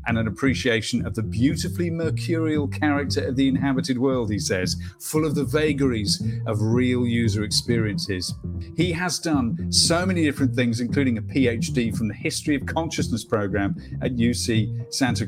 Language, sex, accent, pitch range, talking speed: English, male, British, 115-150 Hz, 160 wpm